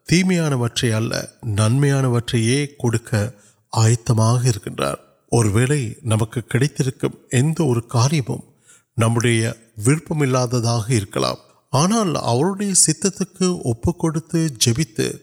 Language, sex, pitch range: Urdu, male, 115-145 Hz